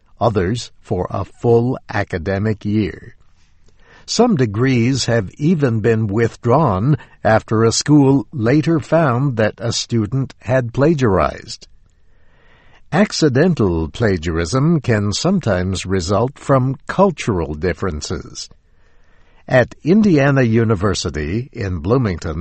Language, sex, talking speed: English, male, 95 wpm